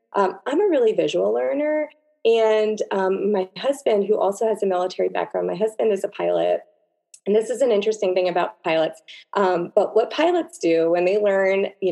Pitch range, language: 165-225 Hz, English